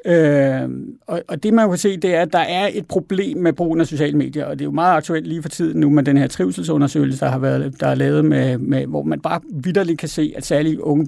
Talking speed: 270 wpm